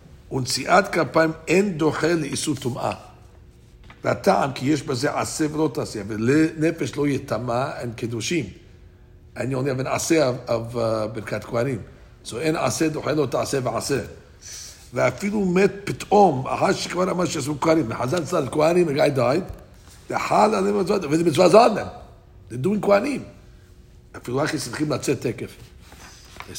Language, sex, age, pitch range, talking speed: English, male, 60-79, 115-160 Hz, 35 wpm